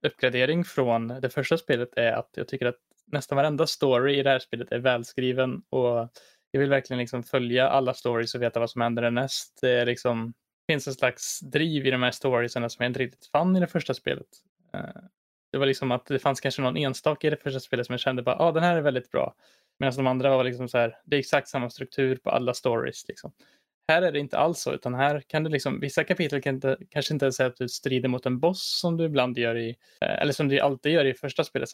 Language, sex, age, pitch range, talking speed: Swedish, male, 20-39, 125-145 Hz, 245 wpm